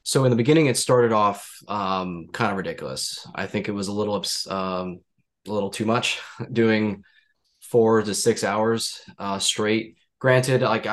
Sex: male